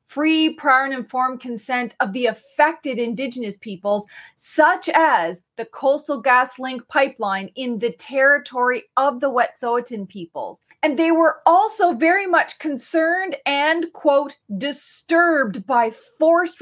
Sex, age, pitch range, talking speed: female, 30-49, 240-310 Hz, 130 wpm